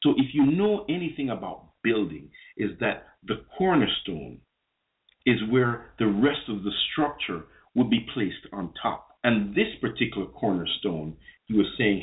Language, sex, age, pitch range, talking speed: English, male, 50-69, 95-130 Hz, 150 wpm